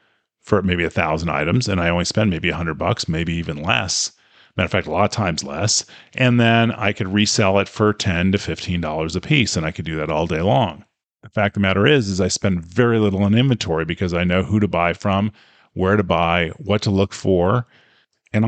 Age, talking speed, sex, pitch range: 40-59, 235 wpm, male, 90-110 Hz